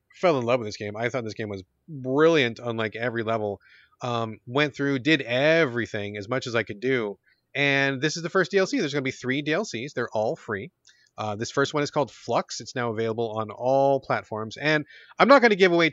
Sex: male